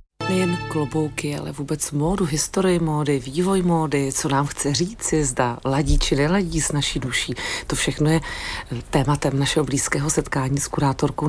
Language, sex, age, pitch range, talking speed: Czech, female, 40-59, 140-170 Hz, 155 wpm